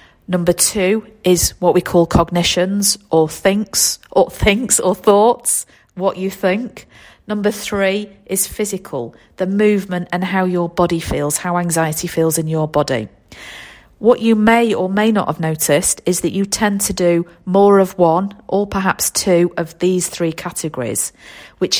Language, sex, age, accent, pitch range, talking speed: English, female, 40-59, British, 160-195 Hz, 160 wpm